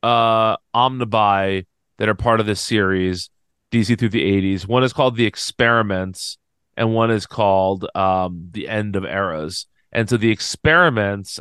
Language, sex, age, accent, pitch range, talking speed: English, male, 30-49, American, 105-125 Hz, 160 wpm